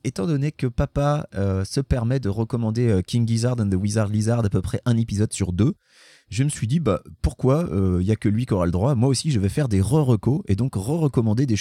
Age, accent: 30-49, French